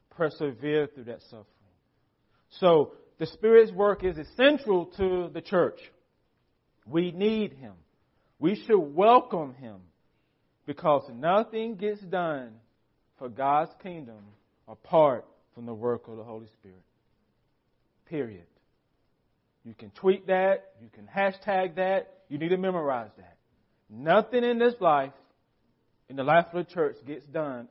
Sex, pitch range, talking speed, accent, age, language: male, 120-185 Hz, 130 wpm, American, 40-59, English